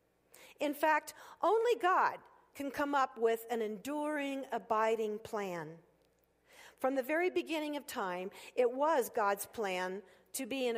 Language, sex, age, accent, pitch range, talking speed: English, female, 50-69, American, 200-310 Hz, 140 wpm